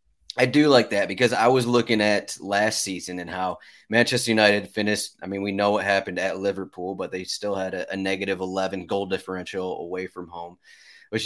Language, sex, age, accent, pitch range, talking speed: English, male, 20-39, American, 95-110 Hz, 195 wpm